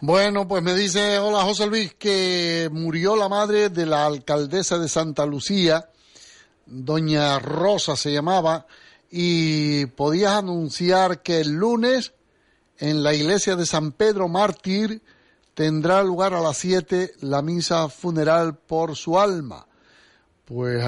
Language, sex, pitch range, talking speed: Spanish, male, 130-185 Hz, 130 wpm